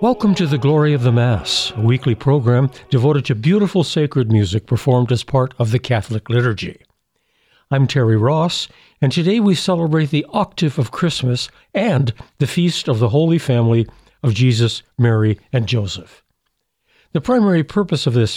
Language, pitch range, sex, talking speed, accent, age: English, 120-155 Hz, male, 165 wpm, American, 60-79